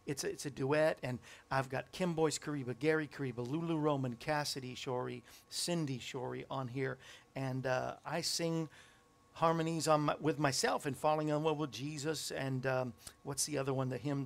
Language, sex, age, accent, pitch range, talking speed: English, male, 50-69, American, 125-155 Hz, 185 wpm